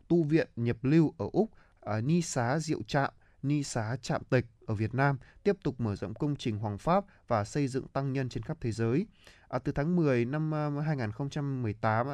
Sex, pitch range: male, 105-135 Hz